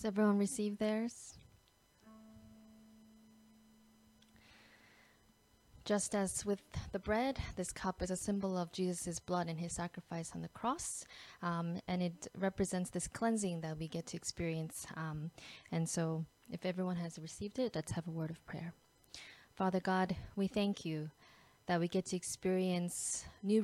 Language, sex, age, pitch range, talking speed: English, female, 20-39, 165-190 Hz, 150 wpm